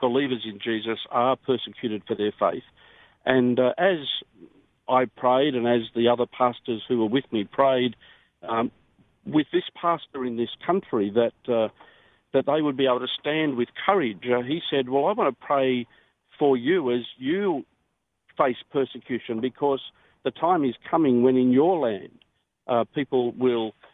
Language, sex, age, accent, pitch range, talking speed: English, male, 50-69, Australian, 120-140 Hz, 170 wpm